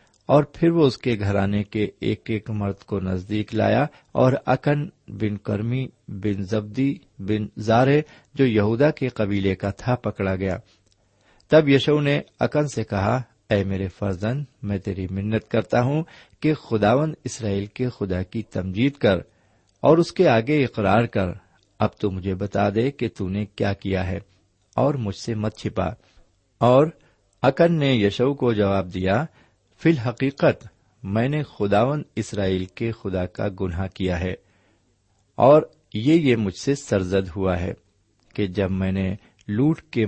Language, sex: Urdu, male